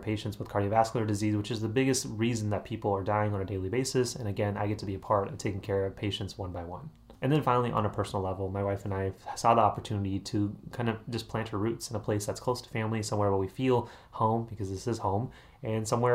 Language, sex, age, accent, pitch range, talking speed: English, male, 30-49, American, 100-125 Hz, 270 wpm